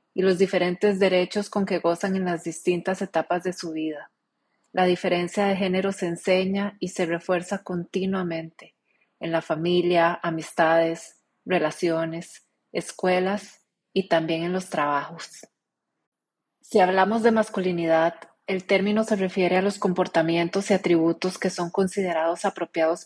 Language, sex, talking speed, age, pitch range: Spanish, female, 135 wpm, 30-49, 170-195 Hz